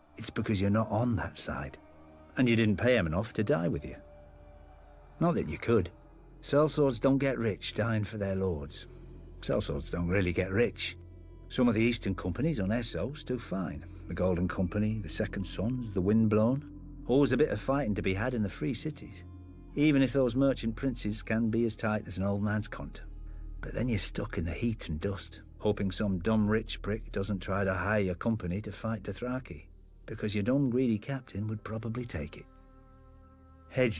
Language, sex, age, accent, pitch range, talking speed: English, male, 50-69, British, 85-110 Hz, 195 wpm